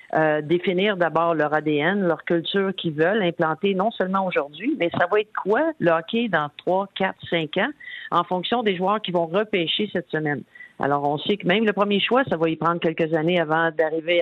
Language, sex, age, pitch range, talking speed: French, female, 50-69, 155-195 Hz, 210 wpm